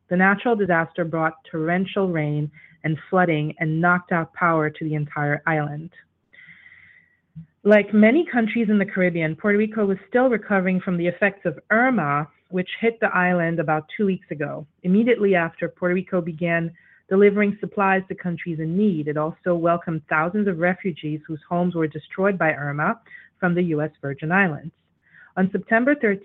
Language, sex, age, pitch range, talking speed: English, female, 30-49, 160-200 Hz, 160 wpm